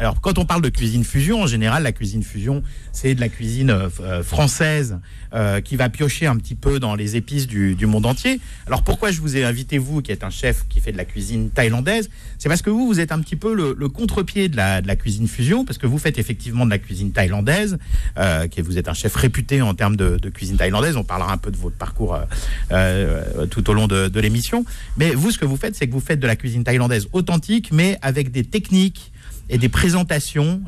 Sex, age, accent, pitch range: male, 50-69, French, 105-140 Hz